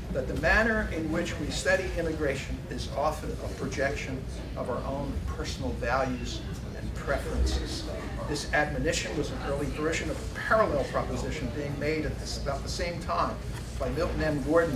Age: 50-69